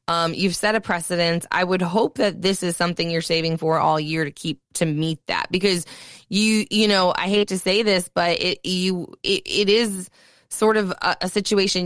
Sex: female